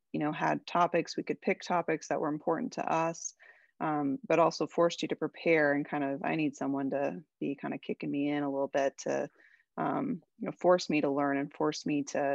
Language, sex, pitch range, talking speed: English, female, 140-160 Hz, 235 wpm